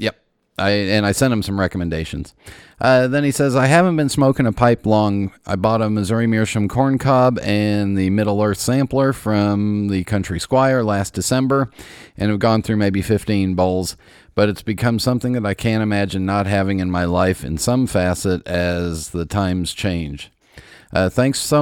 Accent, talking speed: American, 185 wpm